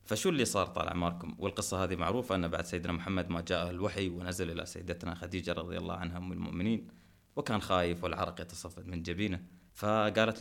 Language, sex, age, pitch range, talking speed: Arabic, male, 30-49, 90-105 Hz, 175 wpm